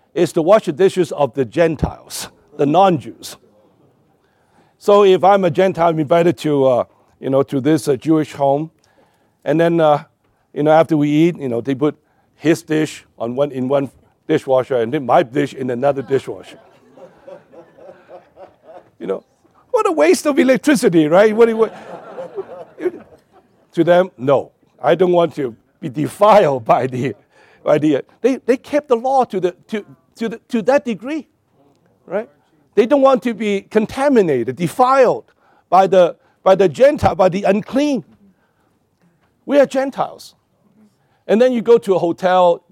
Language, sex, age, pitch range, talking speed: English, male, 60-79, 155-240 Hz, 160 wpm